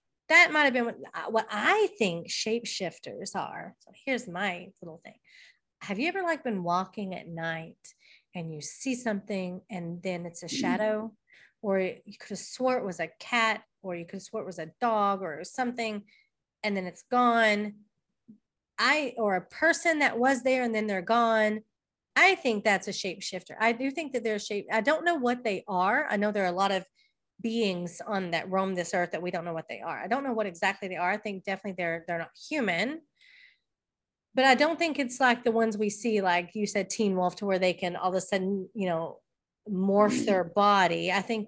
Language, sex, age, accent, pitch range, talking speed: English, female, 30-49, American, 185-235 Hz, 215 wpm